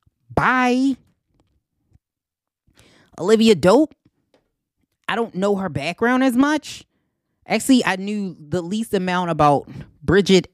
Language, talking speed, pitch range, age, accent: English, 100 wpm, 145-190 Hz, 20-39, American